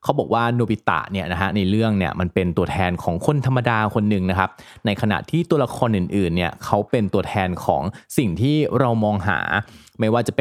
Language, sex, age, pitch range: Thai, male, 20-39, 95-125 Hz